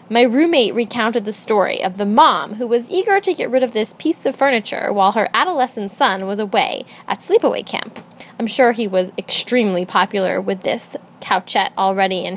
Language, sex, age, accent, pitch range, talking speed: English, female, 20-39, American, 205-285 Hz, 190 wpm